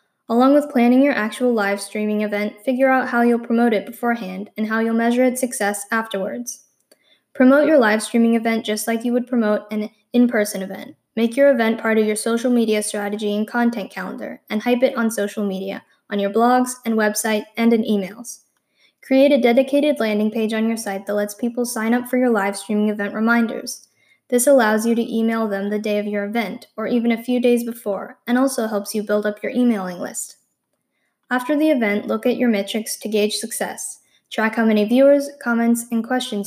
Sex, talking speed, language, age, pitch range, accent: female, 200 wpm, English, 10-29, 210-245 Hz, American